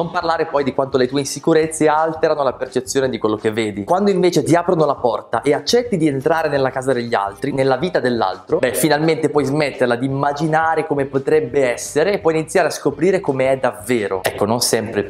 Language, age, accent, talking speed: Italian, 20-39, native, 210 wpm